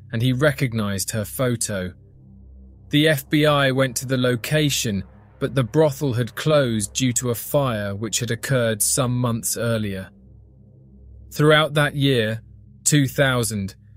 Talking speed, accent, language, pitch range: 130 wpm, British, English, 105-140 Hz